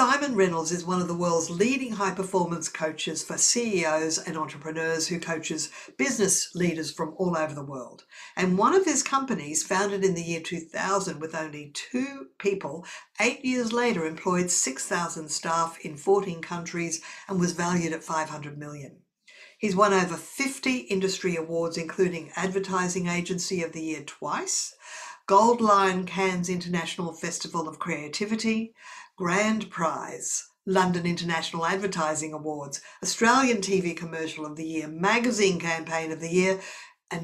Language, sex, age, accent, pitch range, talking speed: English, female, 50-69, Australian, 160-195 Hz, 145 wpm